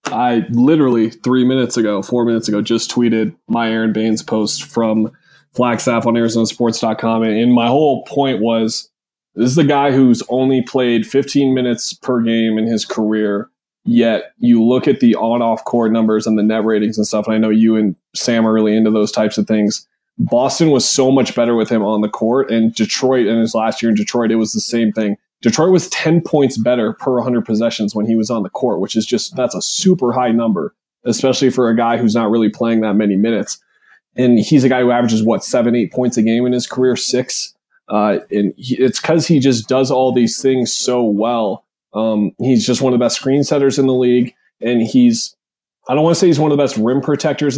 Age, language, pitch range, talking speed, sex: 20-39, English, 110-130 Hz, 220 wpm, male